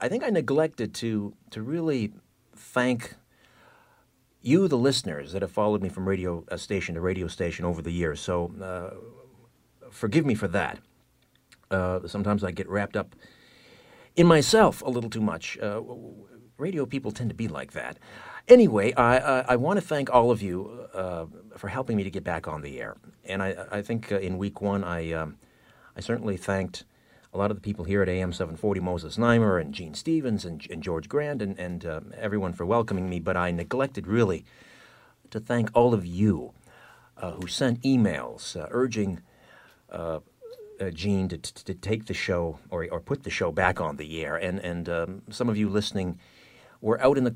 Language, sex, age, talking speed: English, male, 50-69, 195 wpm